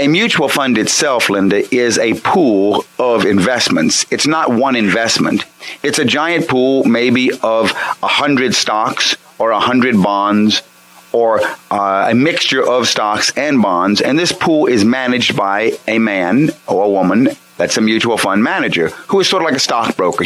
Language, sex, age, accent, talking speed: English, male, 30-49, American, 165 wpm